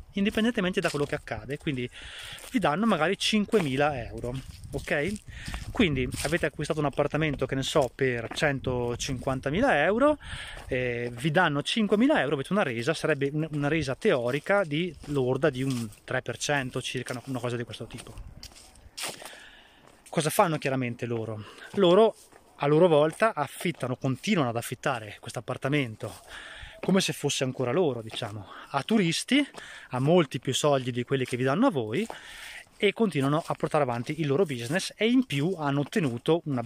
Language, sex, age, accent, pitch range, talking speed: Italian, male, 20-39, native, 125-160 Hz, 150 wpm